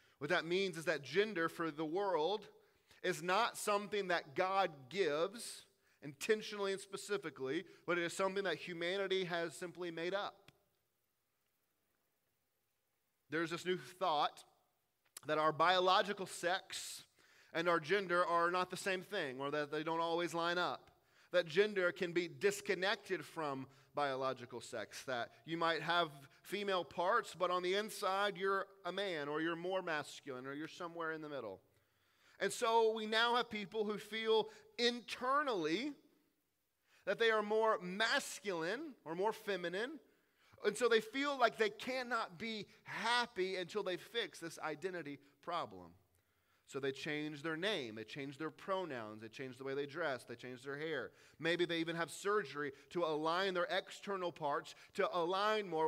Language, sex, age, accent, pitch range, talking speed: English, male, 30-49, American, 155-205 Hz, 155 wpm